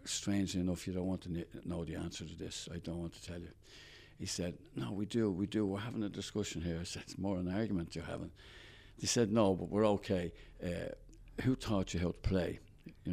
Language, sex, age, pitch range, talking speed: English, male, 60-79, 85-100 Hz, 240 wpm